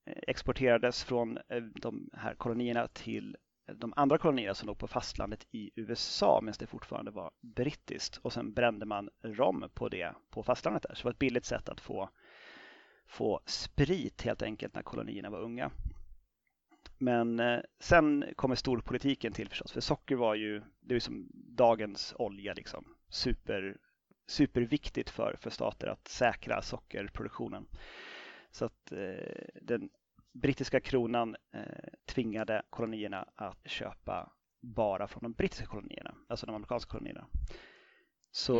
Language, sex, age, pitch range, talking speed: Swedish, male, 30-49, 115-125 Hz, 140 wpm